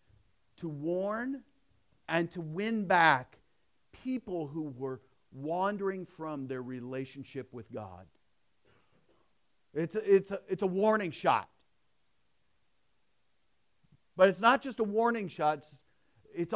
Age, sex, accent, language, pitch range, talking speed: 50-69, male, American, English, 175-245 Hz, 105 wpm